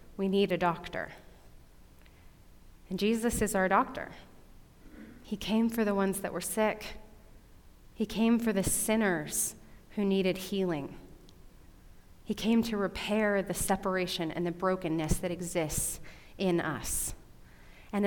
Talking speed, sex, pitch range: 130 wpm, female, 165-195 Hz